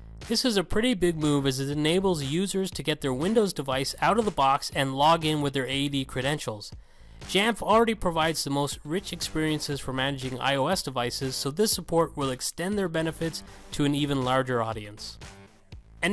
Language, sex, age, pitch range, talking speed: English, male, 30-49, 135-175 Hz, 185 wpm